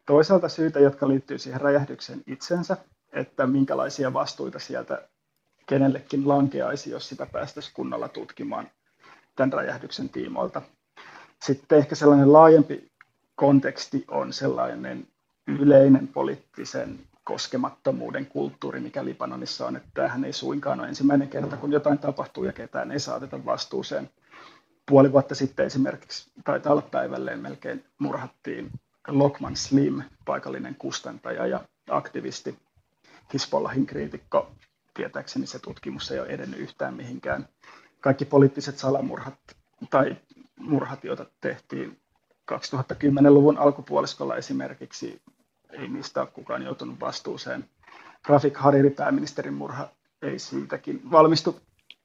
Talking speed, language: 115 wpm, Finnish